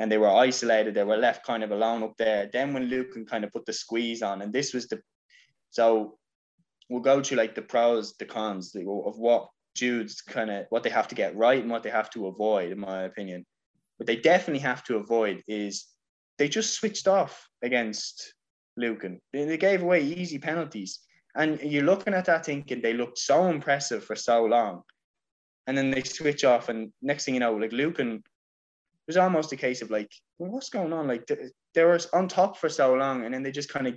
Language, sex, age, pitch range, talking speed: English, male, 10-29, 110-140 Hz, 215 wpm